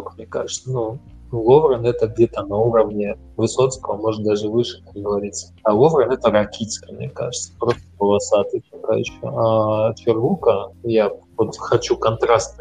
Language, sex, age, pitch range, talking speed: Russian, male, 20-39, 100-115 Hz, 135 wpm